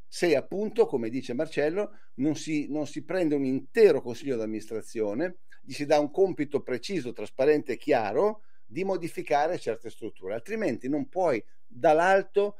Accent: native